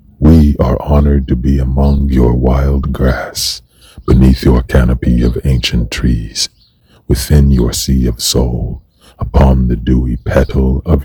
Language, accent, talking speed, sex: English, American, 130 wpm, male